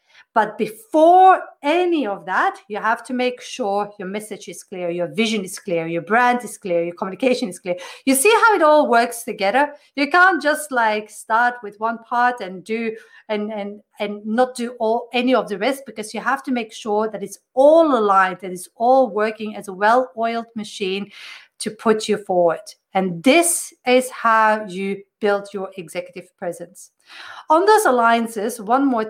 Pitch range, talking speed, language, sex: 205-260 Hz, 185 wpm, English, female